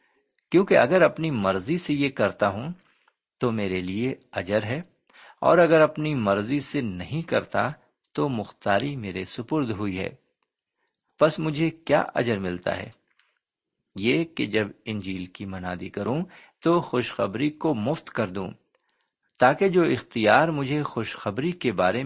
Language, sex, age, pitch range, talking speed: Urdu, male, 50-69, 100-155 Hz, 140 wpm